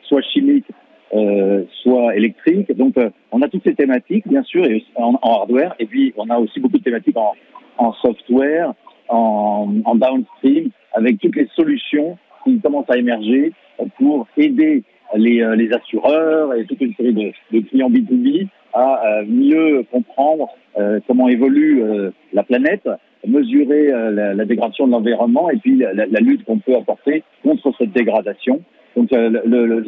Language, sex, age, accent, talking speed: French, male, 50-69, French, 165 wpm